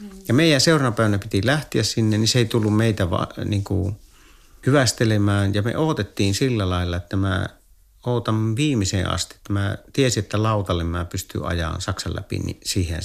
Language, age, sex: Finnish, 50-69, male